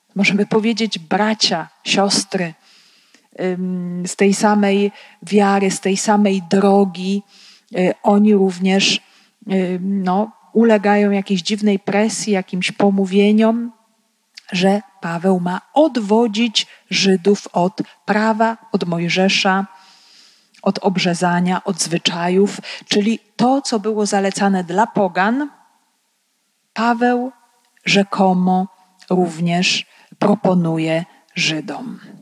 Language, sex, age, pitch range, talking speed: Polish, female, 40-59, 185-220 Hz, 85 wpm